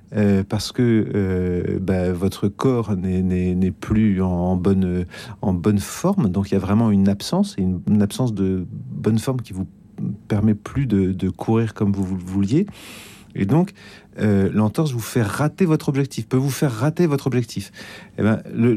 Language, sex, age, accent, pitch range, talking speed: French, male, 40-59, French, 100-130 Hz, 180 wpm